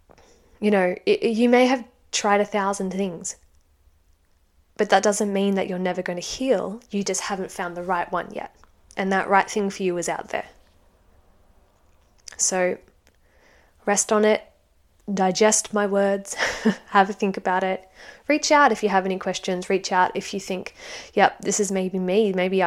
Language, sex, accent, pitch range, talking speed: English, female, Australian, 185-215 Hz, 175 wpm